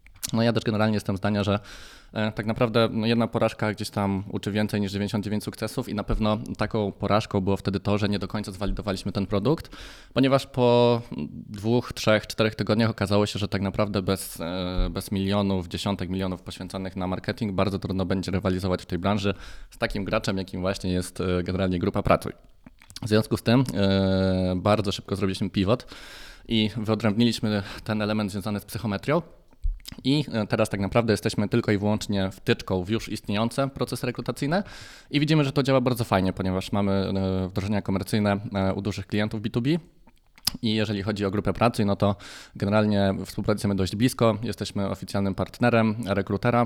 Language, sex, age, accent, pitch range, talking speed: Polish, male, 20-39, native, 95-110 Hz, 170 wpm